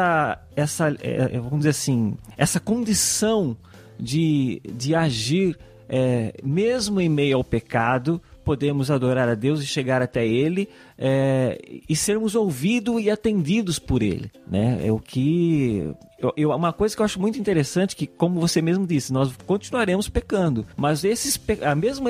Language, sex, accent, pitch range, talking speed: Portuguese, male, Brazilian, 130-175 Hz, 155 wpm